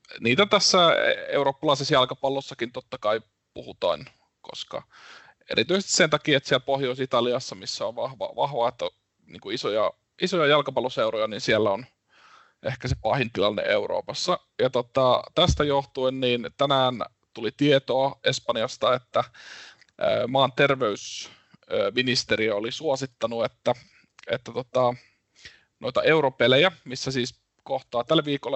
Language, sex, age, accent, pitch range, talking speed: Finnish, male, 20-39, native, 125-145 Hz, 115 wpm